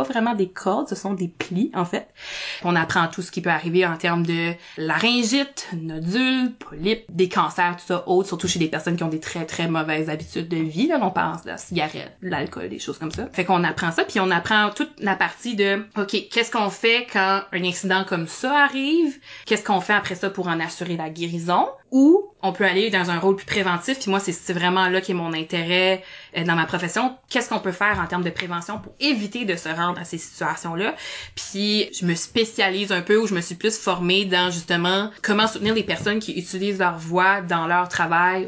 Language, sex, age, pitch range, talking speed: French, female, 20-39, 170-210 Hz, 225 wpm